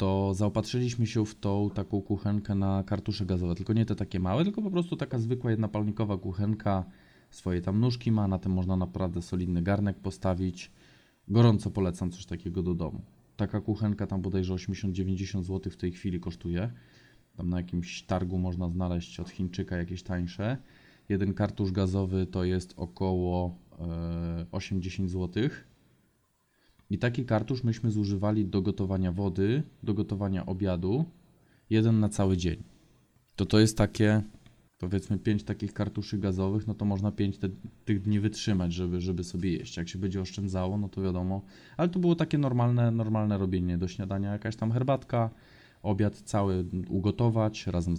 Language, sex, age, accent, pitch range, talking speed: Polish, male, 20-39, native, 95-110 Hz, 160 wpm